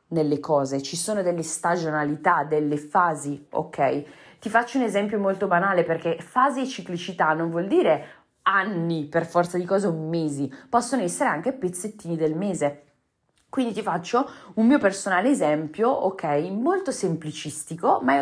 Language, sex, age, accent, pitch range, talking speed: Italian, female, 30-49, native, 155-220 Hz, 155 wpm